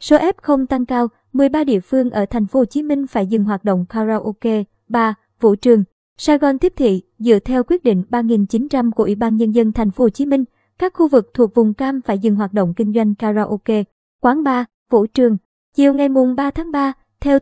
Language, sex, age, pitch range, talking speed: Vietnamese, male, 20-39, 220-265 Hz, 215 wpm